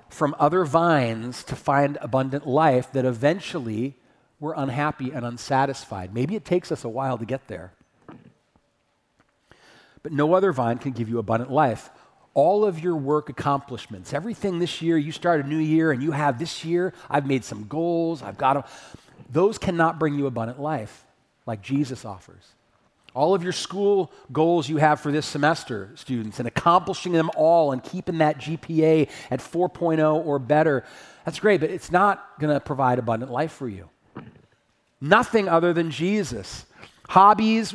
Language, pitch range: English, 135-185 Hz